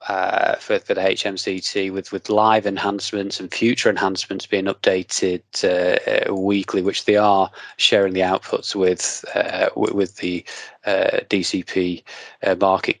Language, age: English, 20-39